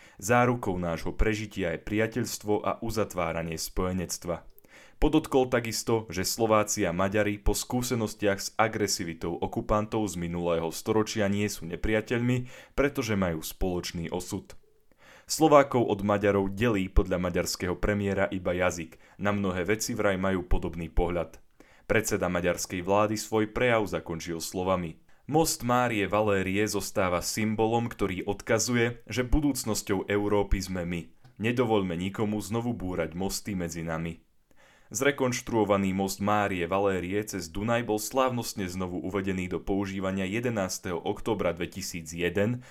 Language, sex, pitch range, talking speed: Slovak, male, 90-115 Hz, 120 wpm